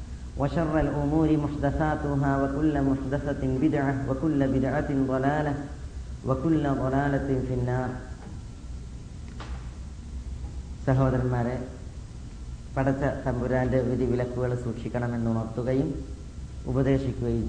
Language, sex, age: Malayalam, female, 30-49